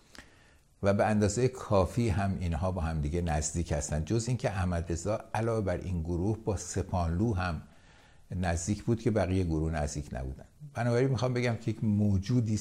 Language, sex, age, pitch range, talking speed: English, male, 60-79, 80-110 Hz, 160 wpm